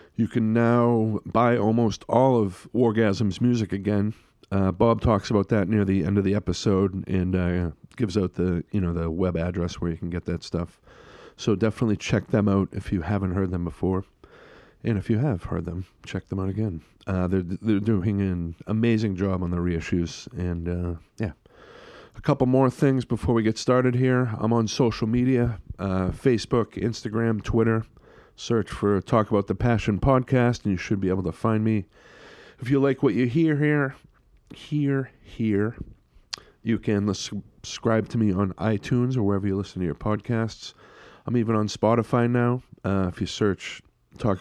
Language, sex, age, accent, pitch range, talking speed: English, male, 40-59, American, 95-120 Hz, 185 wpm